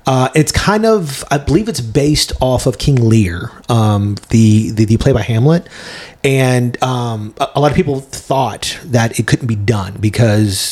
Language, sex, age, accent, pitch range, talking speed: English, male, 30-49, American, 115-145 Hz, 185 wpm